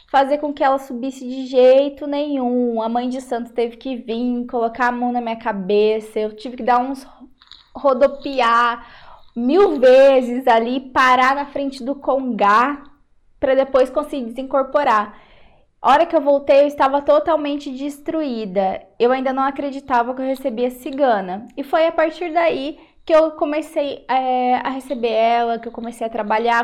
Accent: Brazilian